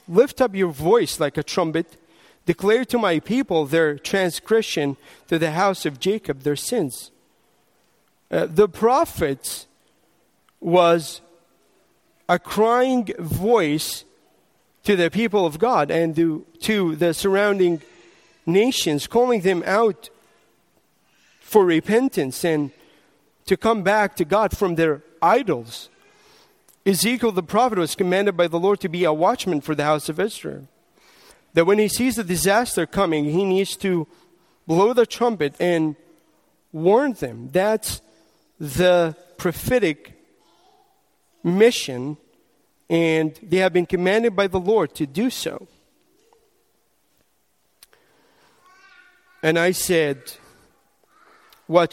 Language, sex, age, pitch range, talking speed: English, male, 40-59, 165-220 Hz, 120 wpm